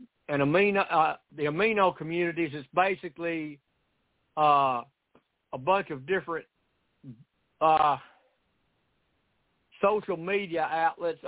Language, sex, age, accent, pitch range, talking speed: English, male, 60-79, American, 140-180 Hz, 90 wpm